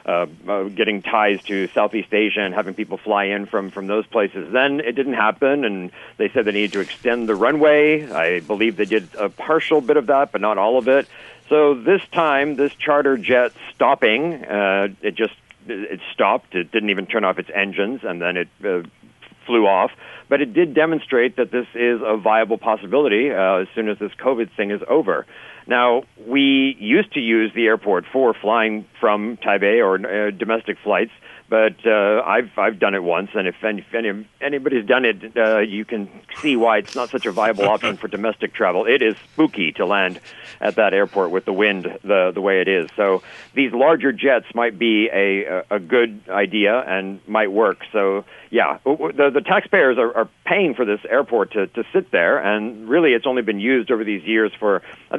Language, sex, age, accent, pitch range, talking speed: English, male, 50-69, American, 100-130 Hz, 200 wpm